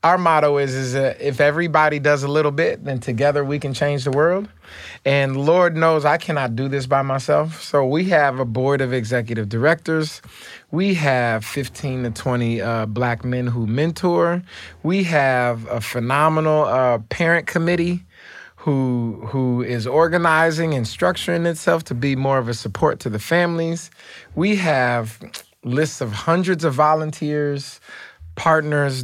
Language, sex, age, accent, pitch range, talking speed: English, male, 30-49, American, 120-150 Hz, 155 wpm